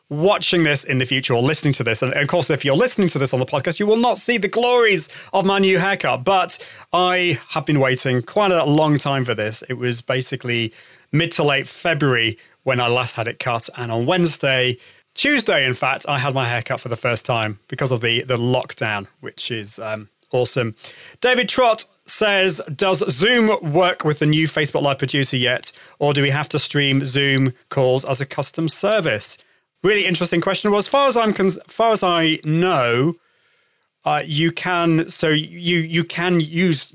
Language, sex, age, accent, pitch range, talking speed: English, male, 30-49, British, 130-175 Hz, 200 wpm